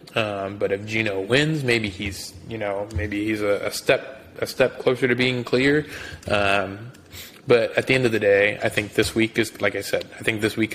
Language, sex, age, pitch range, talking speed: English, male, 20-39, 95-105 Hz, 225 wpm